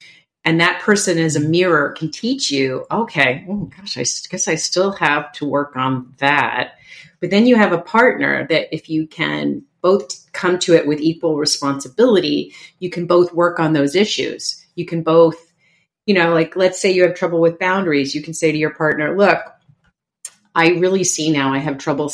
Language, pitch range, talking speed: English, 150-185 Hz, 190 wpm